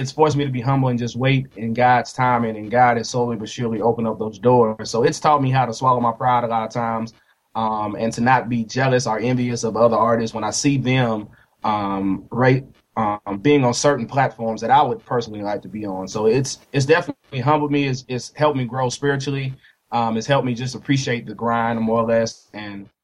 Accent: American